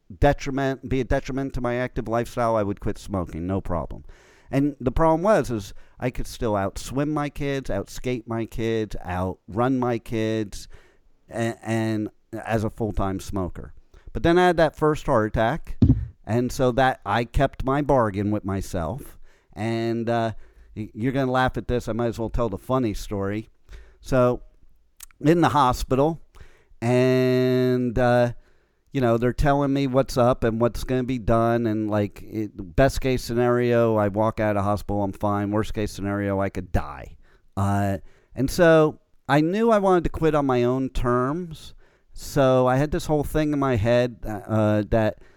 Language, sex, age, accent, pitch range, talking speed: English, male, 50-69, American, 110-140 Hz, 175 wpm